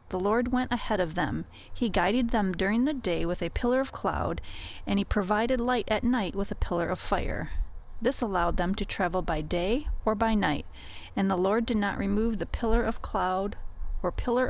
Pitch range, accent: 185-250 Hz, American